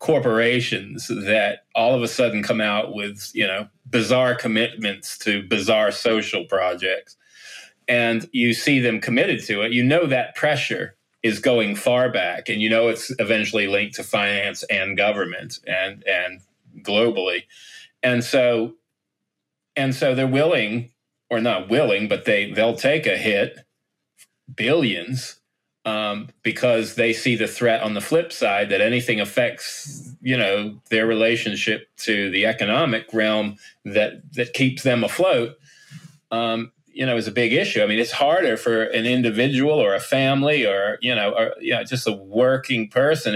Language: English